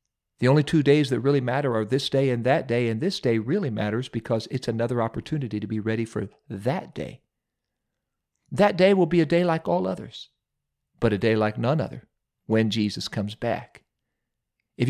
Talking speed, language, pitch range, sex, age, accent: 195 wpm, English, 115-150 Hz, male, 50-69, American